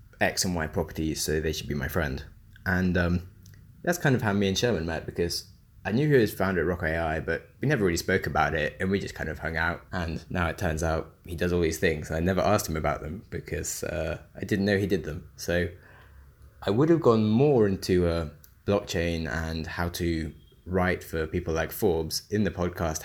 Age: 20-39